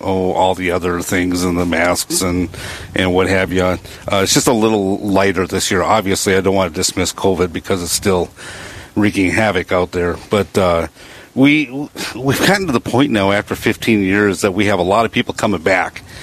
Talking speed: 205 wpm